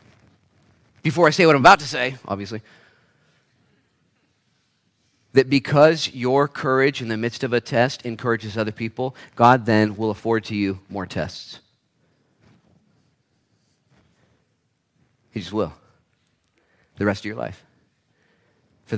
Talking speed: 125 wpm